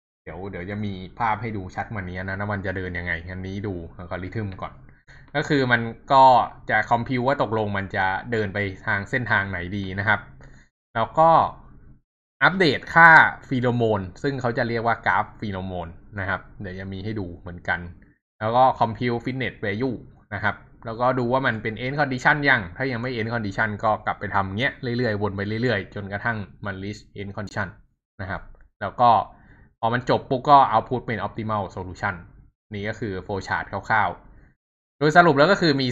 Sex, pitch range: male, 100-125 Hz